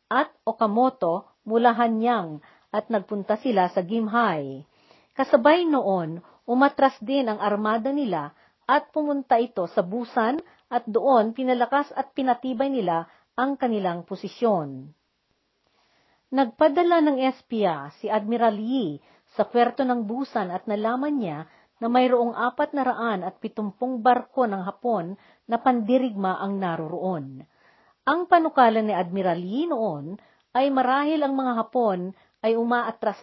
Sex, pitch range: female, 200-260 Hz